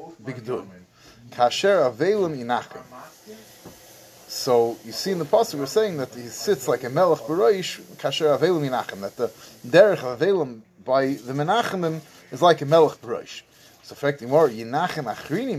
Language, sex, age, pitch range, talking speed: English, male, 30-49, 120-160 Hz, 125 wpm